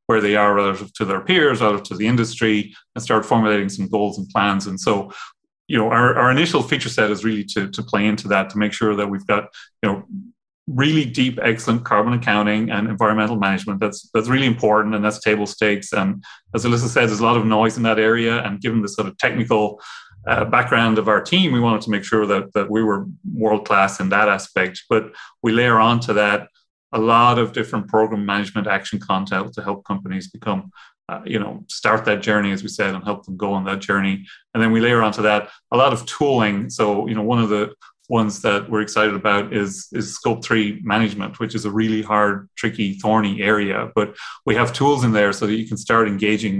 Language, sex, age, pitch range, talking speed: English, male, 30-49, 100-115 Hz, 225 wpm